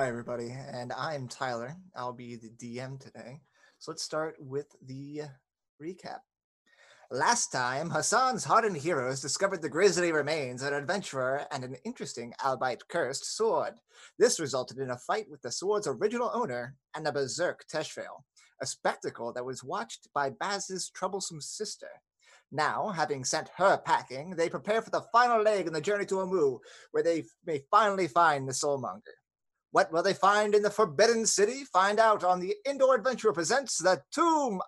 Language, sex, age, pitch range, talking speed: English, male, 30-49, 130-195 Hz, 165 wpm